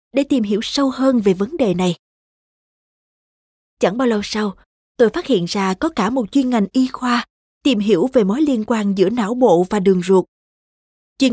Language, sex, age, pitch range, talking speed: Vietnamese, female, 20-39, 200-260 Hz, 195 wpm